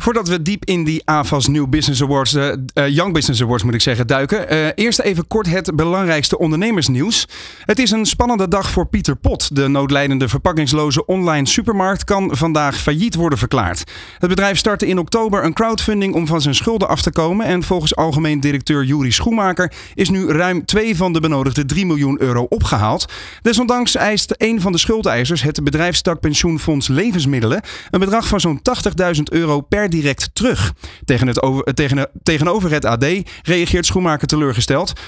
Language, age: Dutch, 40-59